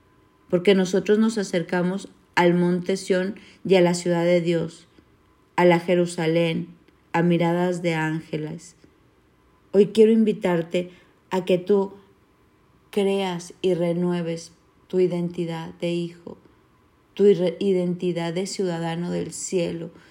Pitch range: 175-205 Hz